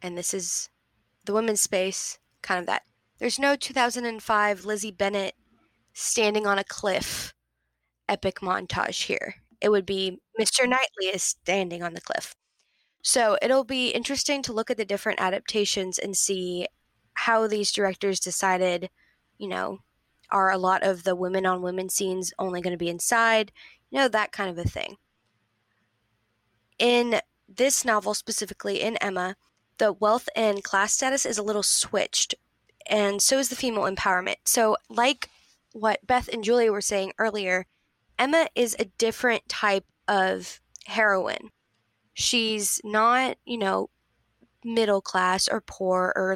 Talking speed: 150 wpm